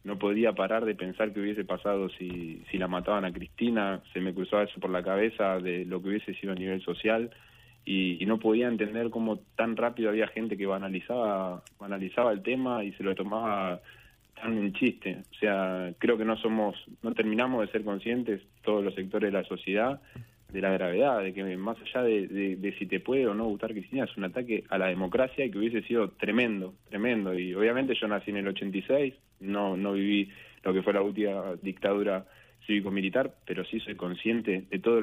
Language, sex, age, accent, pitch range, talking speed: Spanish, male, 20-39, Argentinian, 95-110 Hz, 205 wpm